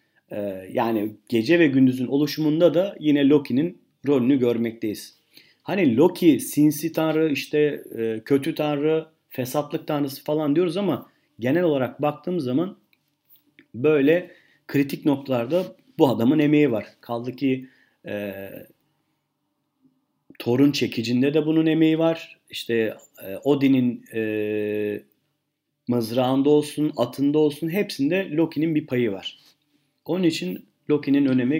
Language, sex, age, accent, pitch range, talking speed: Turkish, male, 40-59, native, 120-160 Hz, 110 wpm